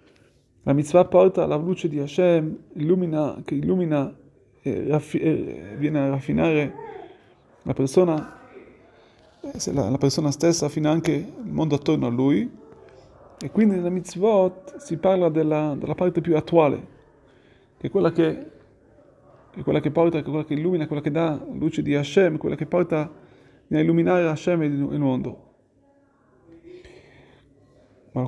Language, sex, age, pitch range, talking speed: Italian, male, 30-49, 145-180 Hz, 155 wpm